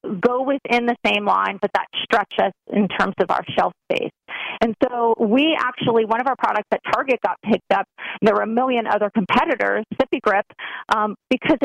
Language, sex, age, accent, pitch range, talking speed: English, female, 40-59, American, 210-255 Hz, 200 wpm